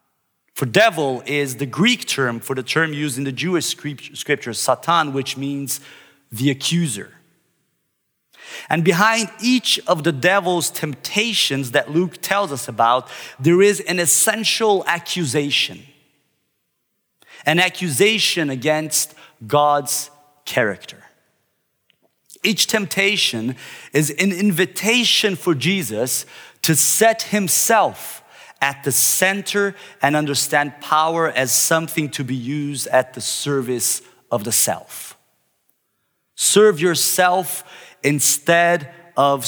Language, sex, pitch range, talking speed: English, male, 135-180 Hz, 110 wpm